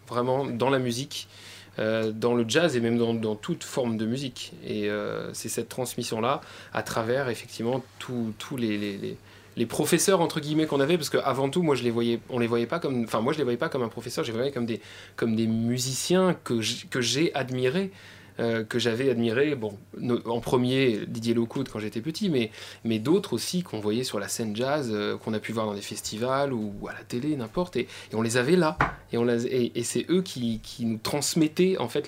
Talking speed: 230 wpm